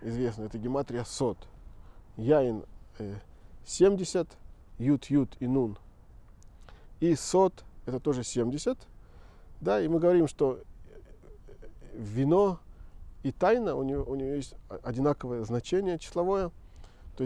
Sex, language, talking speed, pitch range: male, Russian, 120 wpm, 90-150 Hz